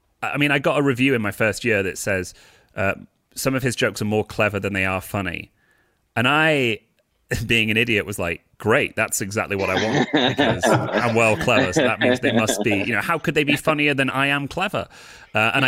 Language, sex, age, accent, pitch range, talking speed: English, male, 30-49, British, 95-135 Hz, 230 wpm